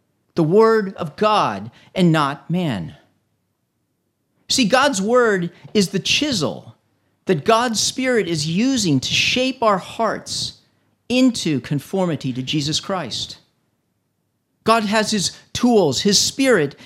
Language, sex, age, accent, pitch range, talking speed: English, male, 40-59, American, 135-215 Hz, 115 wpm